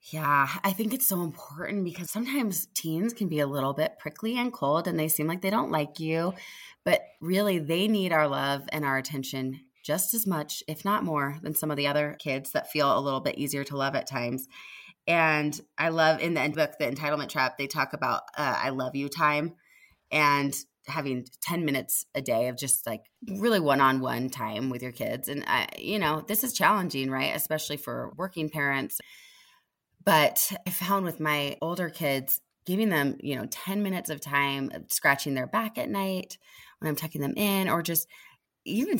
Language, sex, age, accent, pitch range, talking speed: English, female, 20-39, American, 140-190 Hz, 200 wpm